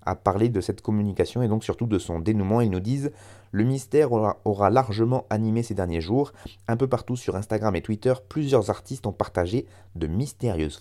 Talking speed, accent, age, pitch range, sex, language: 200 wpm, French, 30-49, 95-120 Hz, male, French